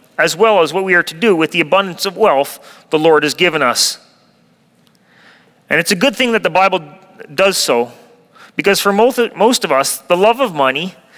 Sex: male